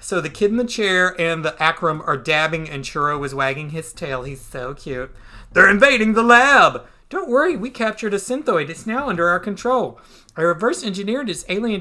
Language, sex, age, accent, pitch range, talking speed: English, male, 40-59, American, 145-200 Hz, 200 wpm